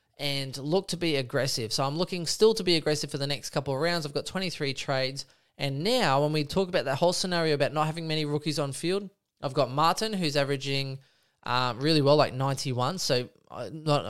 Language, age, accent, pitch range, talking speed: English, 20-39, Australian, 130-160 Hz, 215 wpm